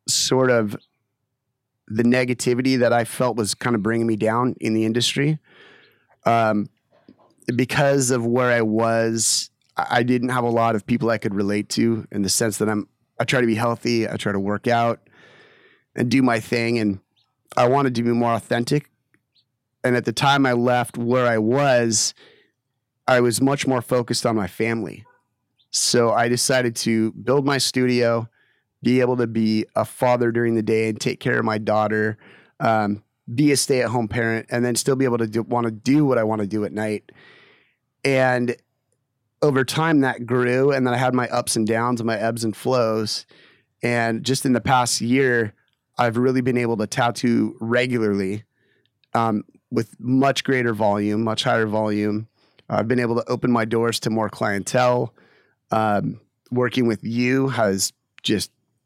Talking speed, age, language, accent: 180 wpm, 30-49, English, American